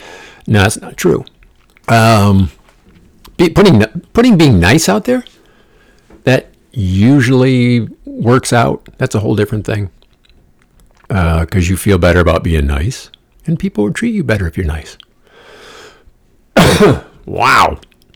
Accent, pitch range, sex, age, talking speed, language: American, 85-115 Hz, male, 50-69, 125 wpm, English